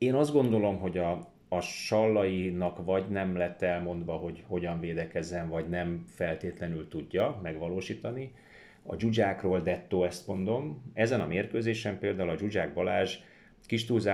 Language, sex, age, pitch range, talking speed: Hungarian, male, 30-49, 90-110 Hz, 135 wpm